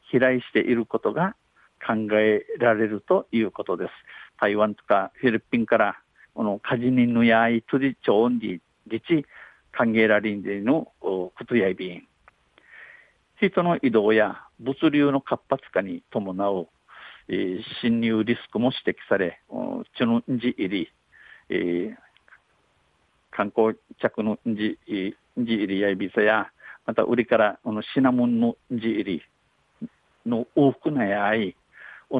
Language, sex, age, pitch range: Japanese, male, 50-69, 110-135 Hz